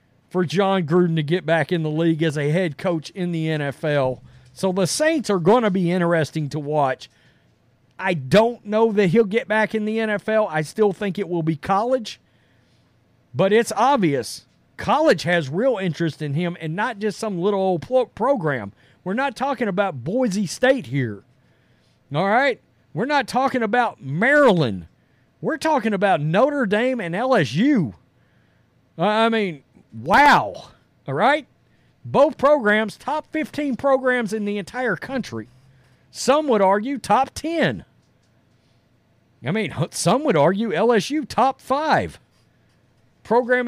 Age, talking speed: 40-59, 150 wpm